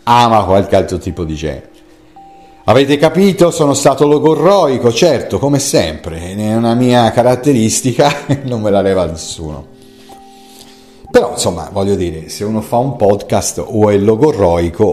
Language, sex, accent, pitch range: Italian, male, native, 90-135 Hz